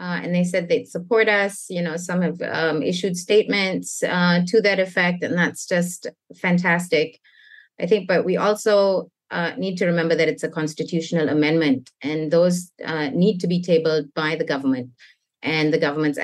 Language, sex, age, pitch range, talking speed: English, female, 30-49, 150-185 Hz, 180 wpm